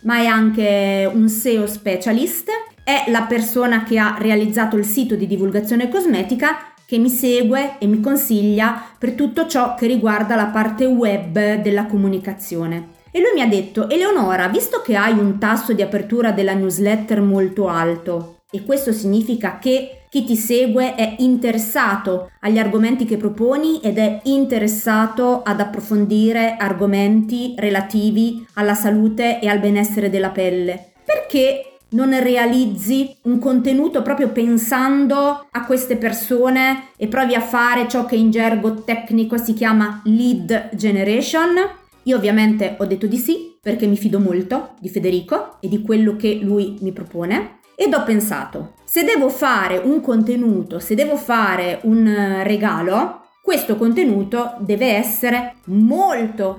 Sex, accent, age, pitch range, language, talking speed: female, native, 30-49, 205-245 Hz, Italian, 145 wpm